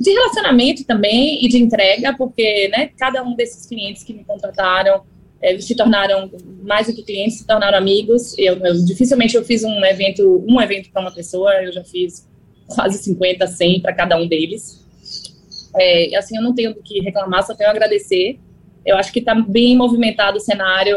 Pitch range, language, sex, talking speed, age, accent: 200-275 Hz, Portuguese, female, 195 wpm, 20-39, Brazilian